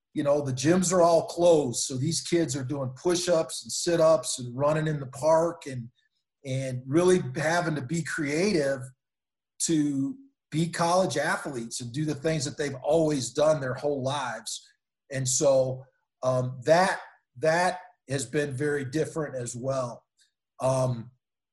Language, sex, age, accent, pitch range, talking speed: English, male, 40-59, American, 130-165 Hz, 150 wpm